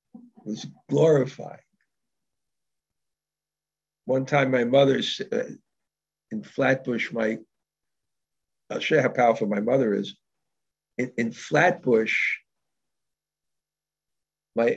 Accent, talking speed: American, 95 wpm